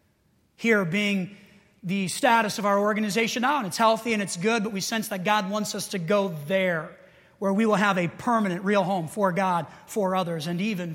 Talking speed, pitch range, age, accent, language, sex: 210 wpm, 190-225 Hz, 30-49, American, English, male